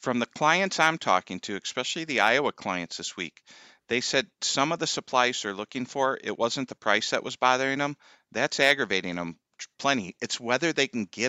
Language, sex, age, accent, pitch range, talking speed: English, male, 40-59, American, 110-145 Hz, 200 wpm